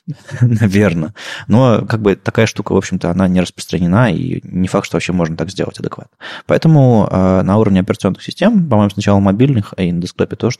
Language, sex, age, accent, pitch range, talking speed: Russian, male, 20-39, native, 95-115 Hz, 180 wpm